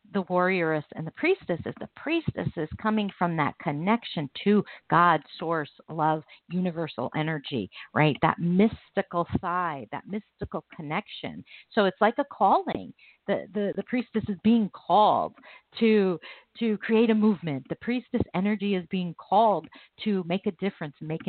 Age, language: 50-69, English